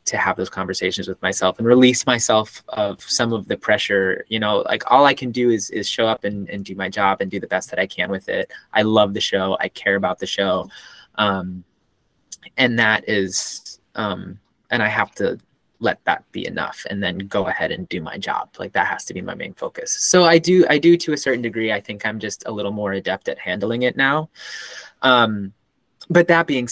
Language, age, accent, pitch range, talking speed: English, 20-39, American, 100-125 Hz, 230 wpm